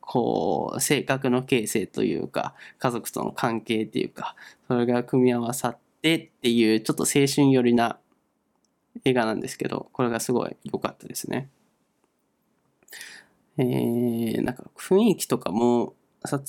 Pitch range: 125-155 Hz